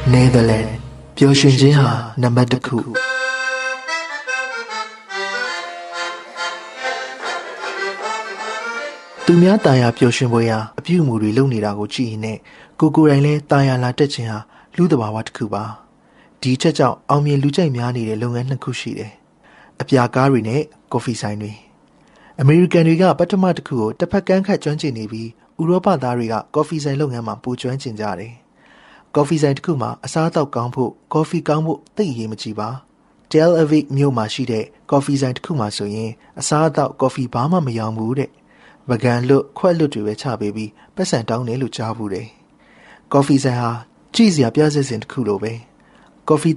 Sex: male